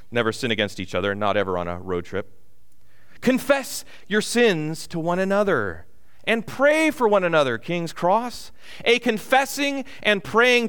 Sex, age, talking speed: male, 30-49, 155 wpm